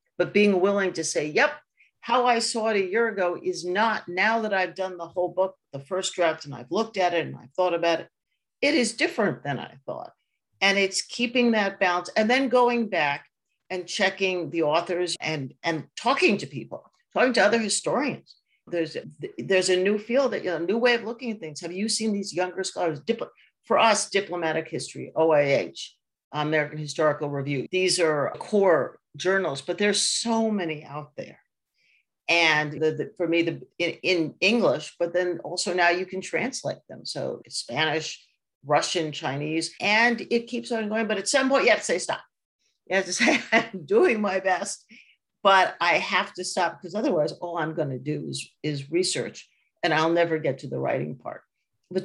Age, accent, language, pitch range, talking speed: 50-69, American, English, 165-205 Hz, 195 wpm